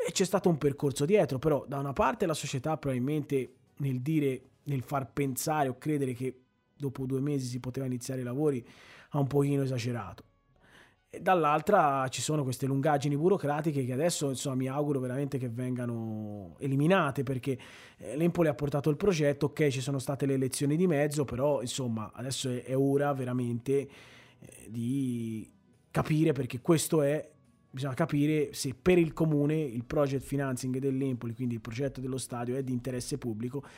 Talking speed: 165 wpm